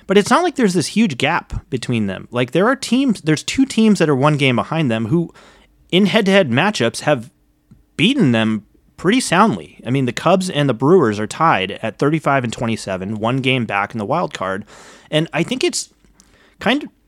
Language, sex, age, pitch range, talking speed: English, male, 30-49, 110-170 Hz, 205 wpm